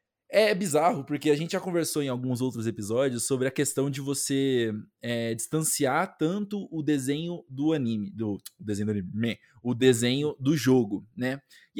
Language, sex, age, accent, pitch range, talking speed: Portuguese, male, 20-39, Brazilian, 125-175 Hz, 180 wpm